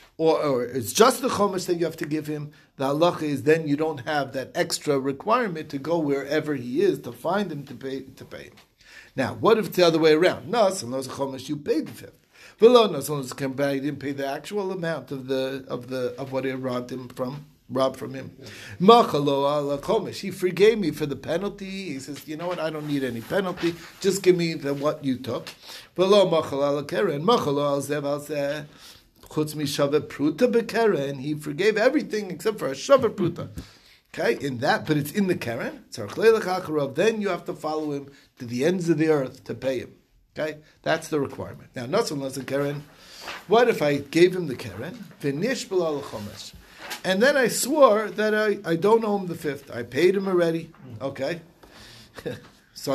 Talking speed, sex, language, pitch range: 180 wpm, male, English, 135-185 Hz